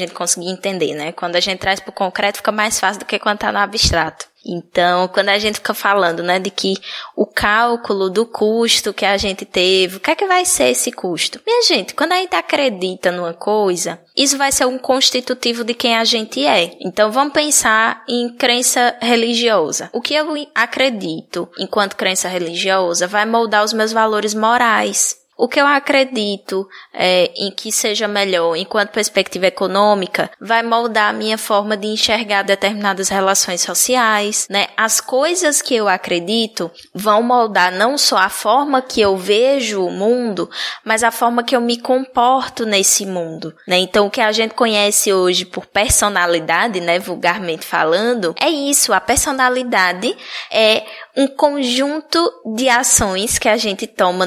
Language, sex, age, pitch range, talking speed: Portuguese, female, 10-29, 190-245 Hz, 170 wpm